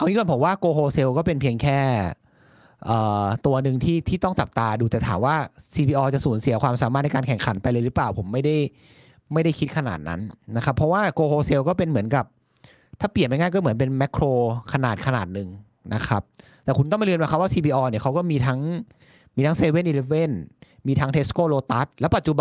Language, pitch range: Thai, 125-150 Hz